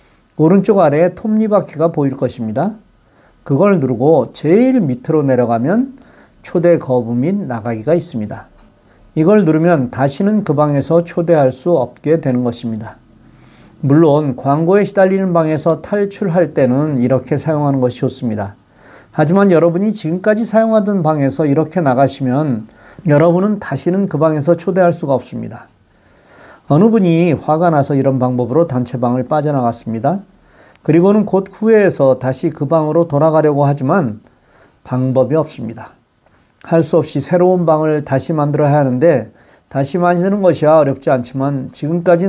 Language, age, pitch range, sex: Korean, 40-59, 130-175 Hz, male